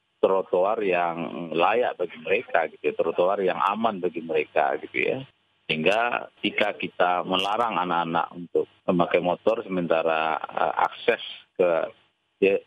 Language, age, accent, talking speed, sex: Indonesian, 30-49, native, 125 wpm, male